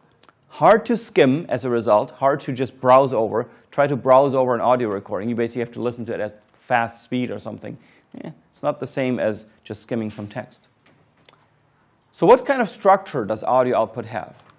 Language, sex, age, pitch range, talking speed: English, male, 30-49, 115-140 Hz, 200 wpm